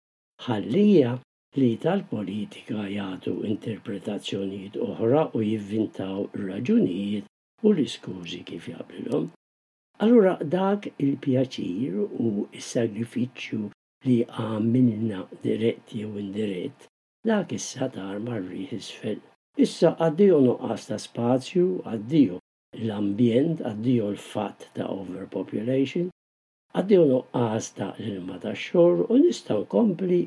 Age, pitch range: 60-79, 115-160 Hz